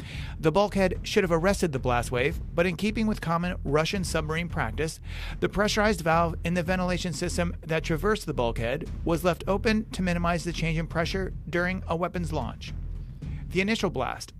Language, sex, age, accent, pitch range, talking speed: English, male, 40-59, American, 155-185 Hz, 180 wpm